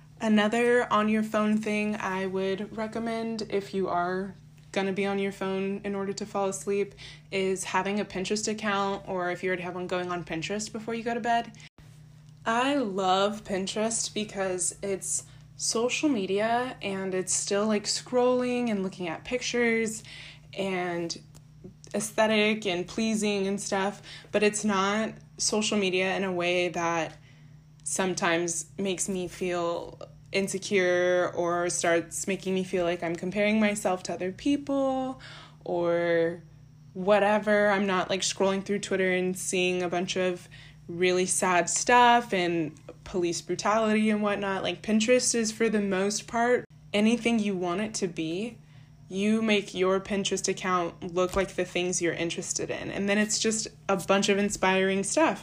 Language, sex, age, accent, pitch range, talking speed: English, female, 10-29, American, 175-210 Hz, 155 wpm